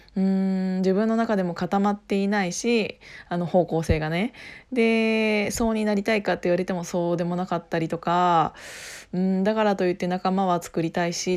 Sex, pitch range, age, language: female, 180-225 Hz, 20-39, Japanese